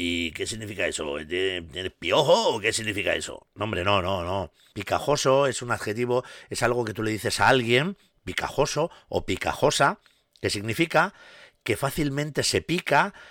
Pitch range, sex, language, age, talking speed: 110-150 Hz, male, Spanish, 50-69, 160 wpm